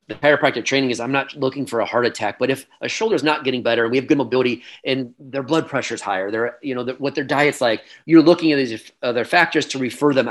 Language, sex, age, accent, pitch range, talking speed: English, male, 30-49, American, 125-155 Hz, 270 wpm